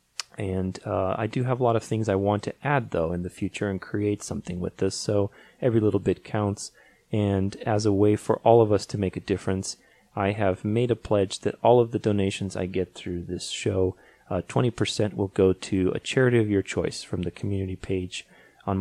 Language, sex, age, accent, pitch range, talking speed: English, male, 30-49, American, 95-110 Hz, 220 wpm